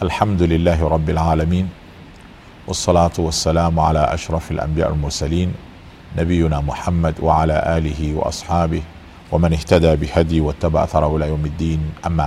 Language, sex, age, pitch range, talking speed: Swahili, male, 40-59, 80-95 Hz, 120 wpm